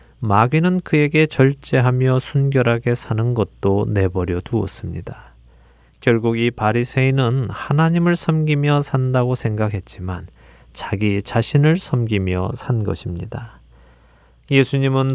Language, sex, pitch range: Korean, male, 100-135 Hz